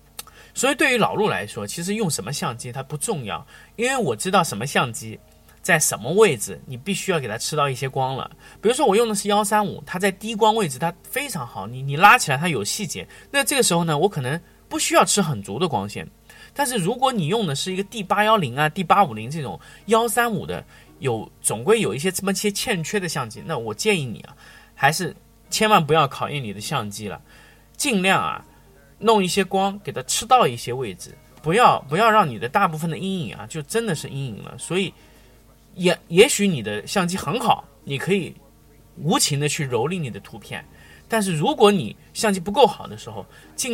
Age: 20-39